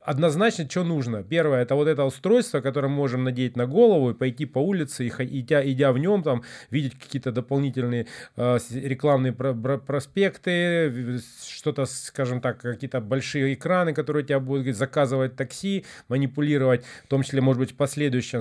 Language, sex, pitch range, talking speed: Russian, male, 120-145 Hz, 170 wpm